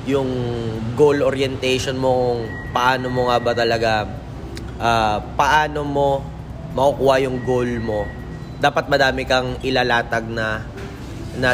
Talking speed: 120 wpm